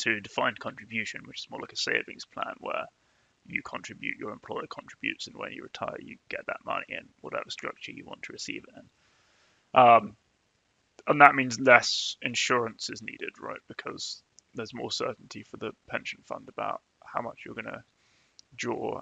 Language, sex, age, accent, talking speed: English, male, 20-39, British, 180 wpm